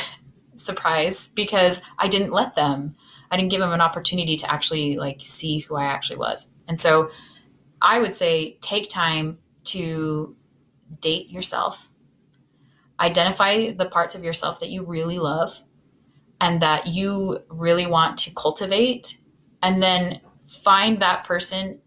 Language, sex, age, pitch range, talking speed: English, female, 20-39, 155-180 Hz, 140 wpm